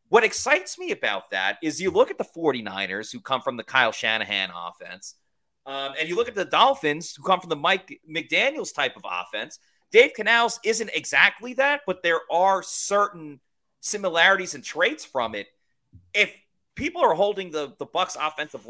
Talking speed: 180 wpm